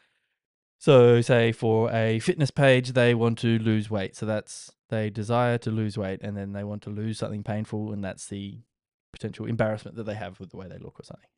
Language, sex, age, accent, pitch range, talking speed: English, male, 10-29, Australian, 100-120 Hz, 215 wpm